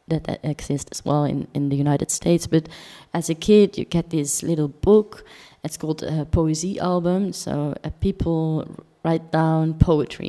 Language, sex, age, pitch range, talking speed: English, female, 20-39, 150-175 Hz, 170 wpm